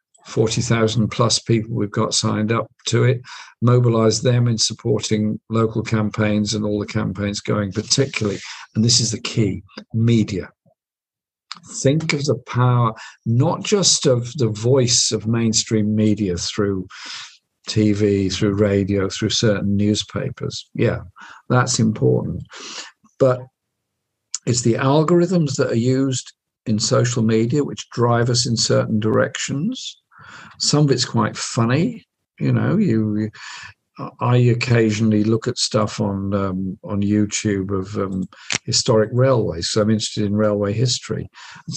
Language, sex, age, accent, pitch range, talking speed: English, male, 50-69, British, 105-135 Hz, 135 wpm